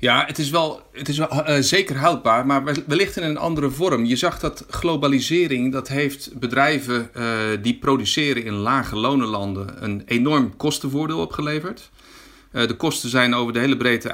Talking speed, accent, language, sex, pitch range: 175 wpm, Dutch, Dutch, male, 110-140 Hz